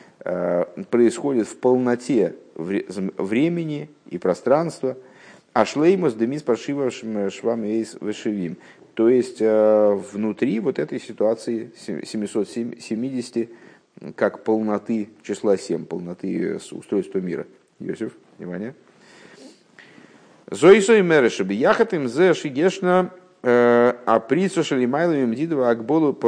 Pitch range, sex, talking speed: 100-130 Hz, male, 60 wpm